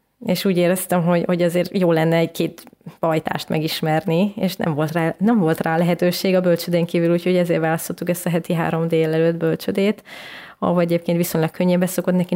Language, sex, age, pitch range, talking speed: Hungarian, female, 20-39, 165-185 Hz, 180 wpm